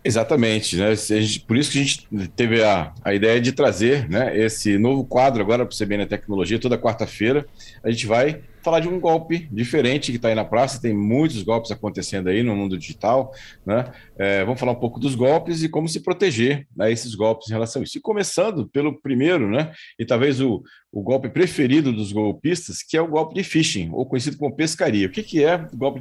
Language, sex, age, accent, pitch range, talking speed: Portuguese, male, 40-59, Brazilian, 110-140 Hz, 215 wpm